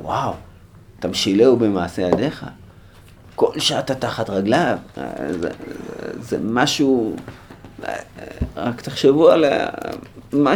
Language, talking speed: Hebrew, 90 wpm